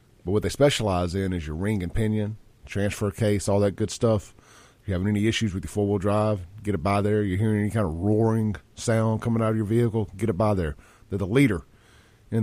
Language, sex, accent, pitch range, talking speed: English, male, American, 95-120 Hz, 240 wpm